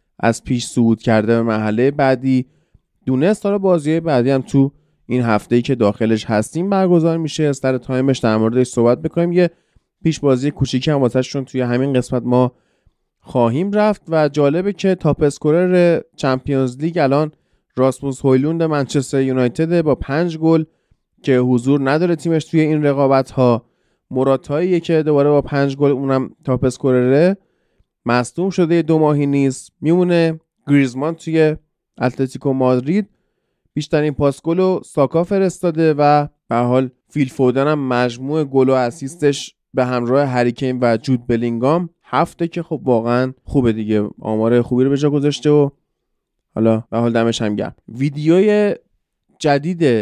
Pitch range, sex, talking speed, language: 125-165 Hz, male, 145 wpm, Persian